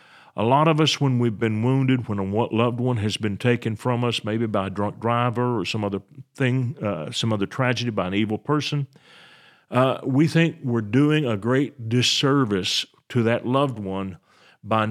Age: 50-69